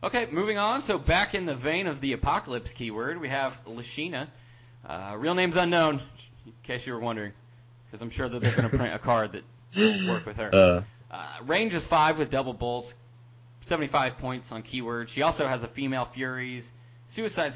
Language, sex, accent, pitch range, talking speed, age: English, male, American, 120-155 Hz, 190 wpm, 20-39